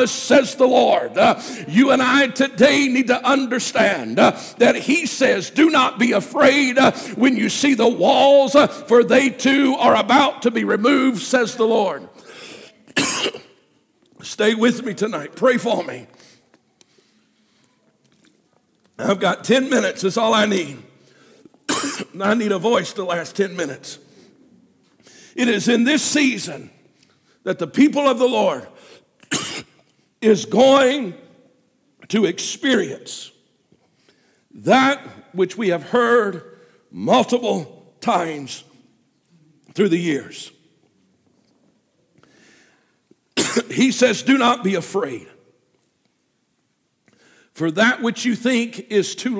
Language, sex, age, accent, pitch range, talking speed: English, male, 50-69, American, 215-265 Hz, 120 wpm